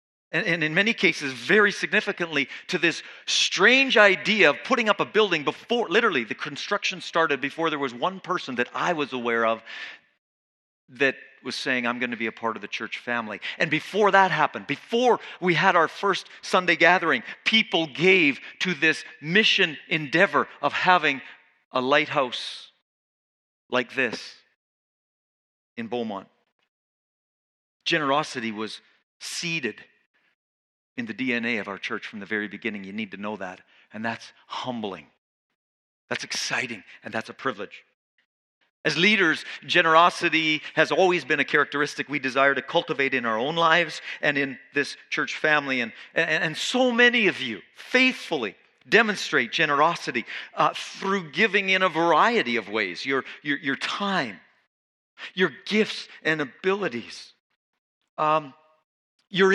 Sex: male